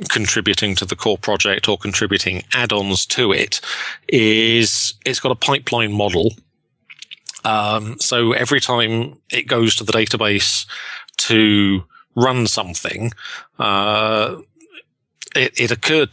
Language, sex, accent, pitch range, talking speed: English, male, British, 100-115 Hz, 120 wpm